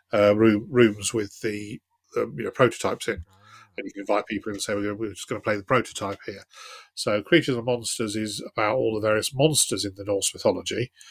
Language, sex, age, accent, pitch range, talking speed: English, male, 40-59, British, 100-115 Hz, 220 wpm